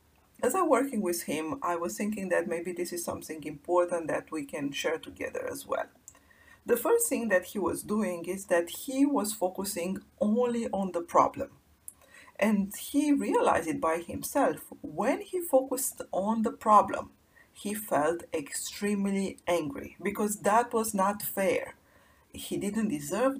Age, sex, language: 40-59, female, English